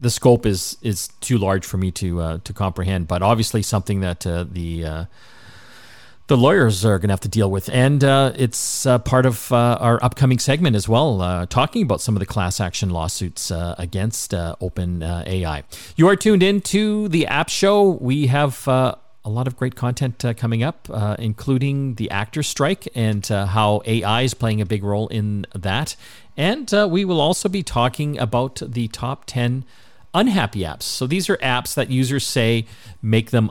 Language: English